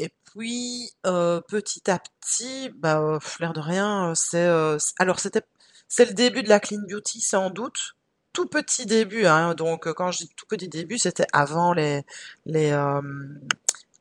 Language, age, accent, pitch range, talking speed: French, 30-49, French, 160-215 Hz, 180 wpm